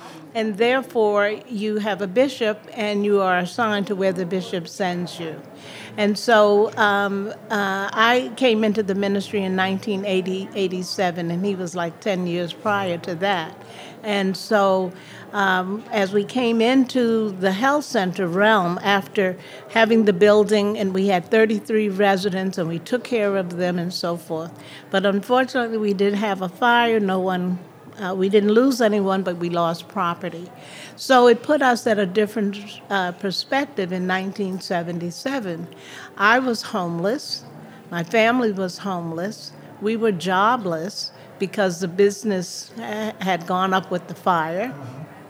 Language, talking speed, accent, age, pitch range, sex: English, 150 wpm, American, 60-79, 180-215 Hz, female